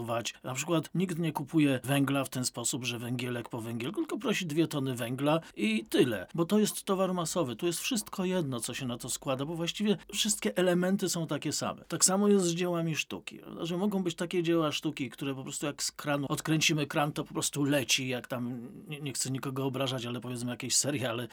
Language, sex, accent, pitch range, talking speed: Polish, male, native, 135-180 Hz, 210 wpm